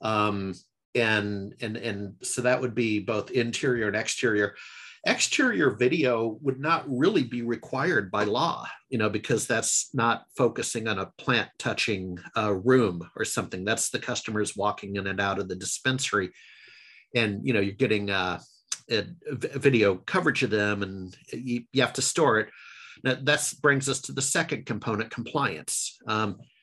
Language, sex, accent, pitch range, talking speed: English, male, American, 105-140 Hz, 165 wpm